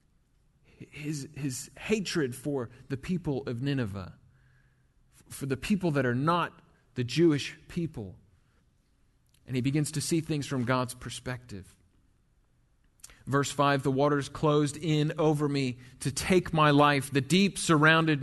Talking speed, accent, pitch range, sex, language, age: 135 wpm, American, 135-185 Hz, male, English, 30-49